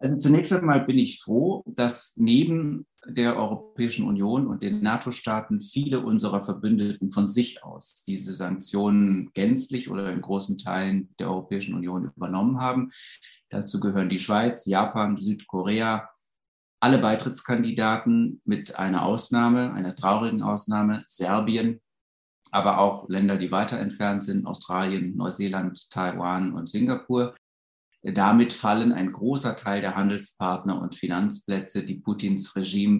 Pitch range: 95-125 Hz